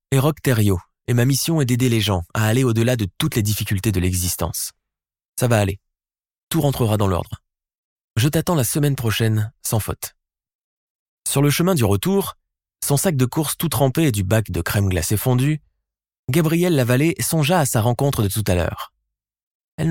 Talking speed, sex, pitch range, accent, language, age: 185 wpm, male, 100-140 Hz, French, French, 20-39